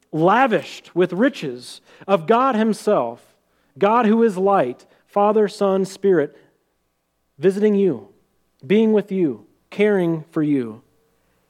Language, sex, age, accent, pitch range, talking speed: English, male, 40-59, American, 155-200 Hz, 110 wpm